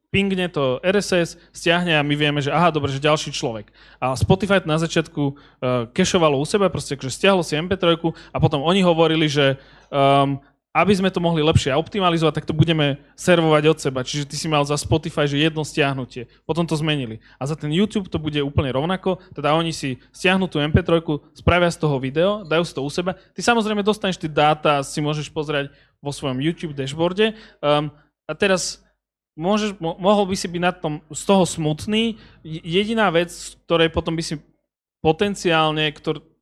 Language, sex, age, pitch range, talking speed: Slovak, male, 20-39, 145-175 Hz, 185 wpm